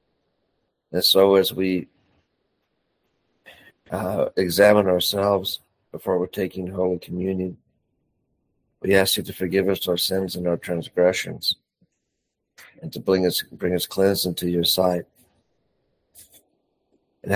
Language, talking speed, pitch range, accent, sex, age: English, 120 wpm, 85-95 Hz, American, male, 60-79